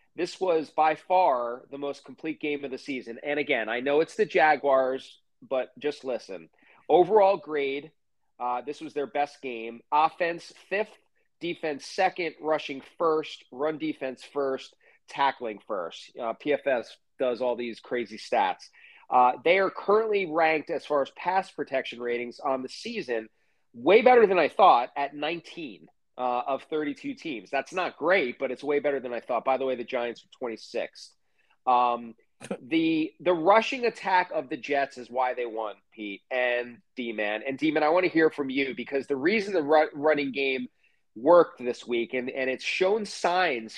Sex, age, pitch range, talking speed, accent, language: male, 30-49, 125-170 Hz, 175 wpm, American, English